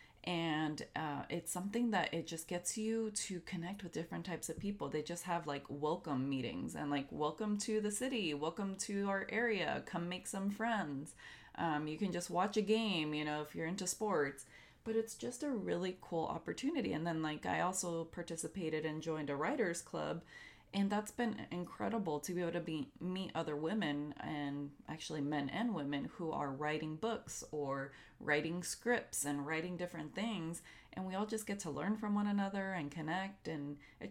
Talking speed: 190 wpm